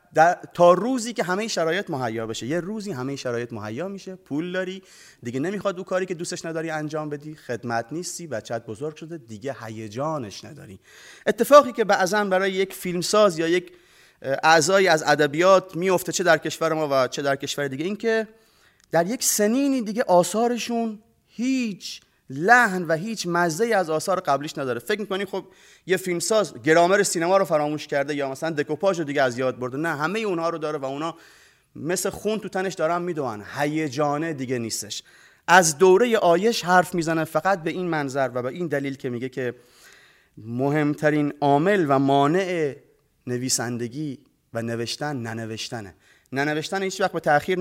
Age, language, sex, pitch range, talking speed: 30-49, Persian, male, 145-200 Hz, 170 wpm